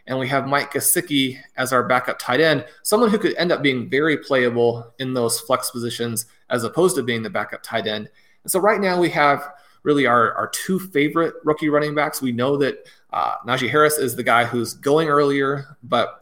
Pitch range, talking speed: 125-150 Hz, 210 wpm